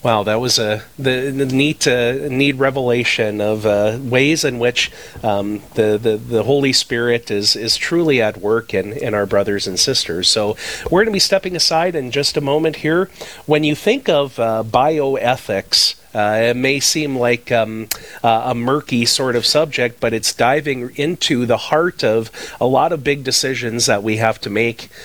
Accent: American